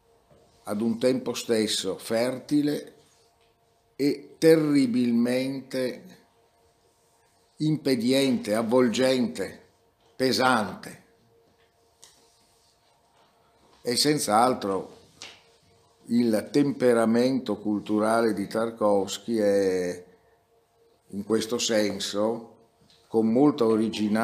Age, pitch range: 60-79, 105-130 Hz